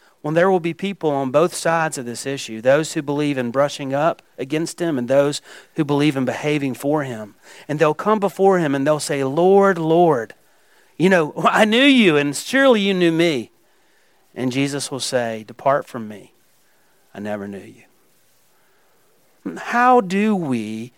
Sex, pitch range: male, 125-170 Hz